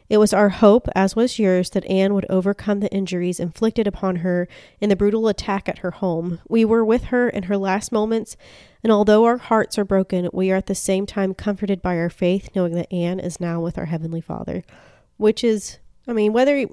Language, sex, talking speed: English, female, 220 wpm